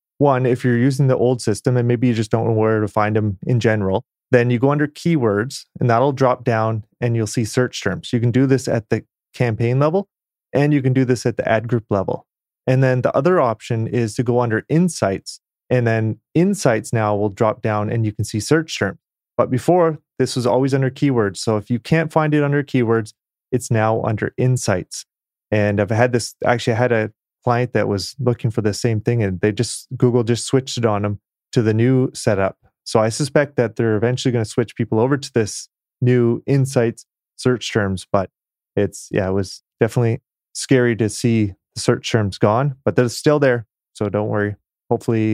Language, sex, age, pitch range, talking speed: English, male, 30-49, 110-130 Hz, 210 wpm